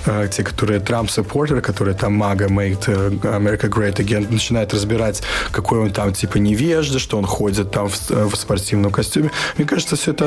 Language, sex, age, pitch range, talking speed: Russian, male, 20-39, 105-135 Hz, 150 wpm